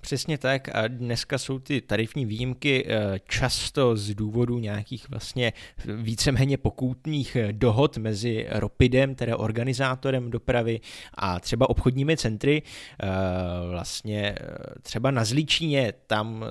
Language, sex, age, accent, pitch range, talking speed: Czech, male, 20-39, native, 105-130 Hz, 110 wpm